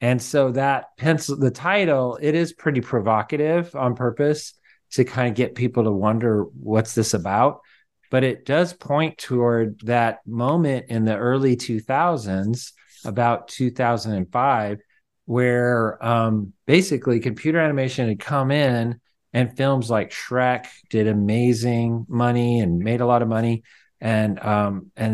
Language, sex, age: English, male, 40-59